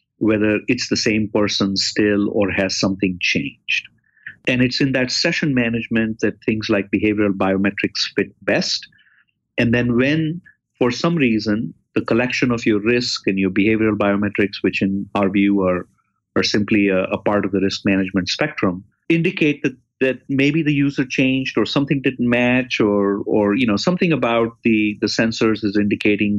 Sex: male